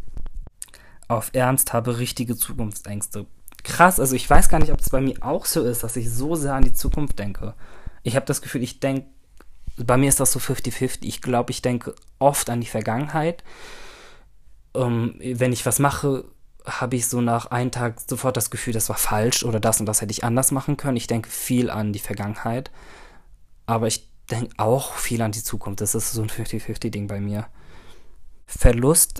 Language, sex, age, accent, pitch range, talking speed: German, male, 20-39, German, 110-130 Hz, 190 wpm